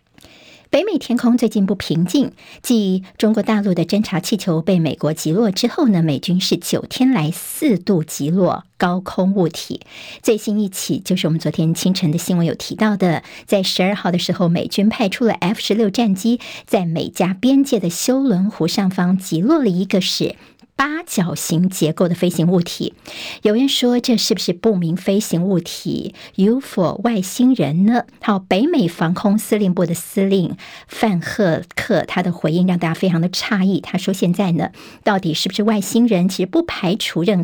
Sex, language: male, Chinese